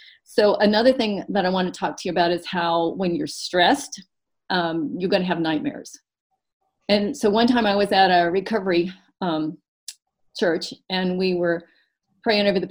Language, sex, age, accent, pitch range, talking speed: English, female, 40-59, American, 175-240 Hz, 185 wpm